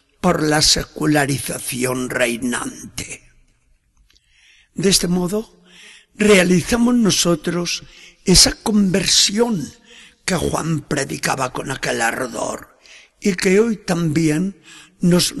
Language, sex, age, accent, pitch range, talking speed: Spanish, male, 60-79, Spanish, 150-195 Hz, 85 wpm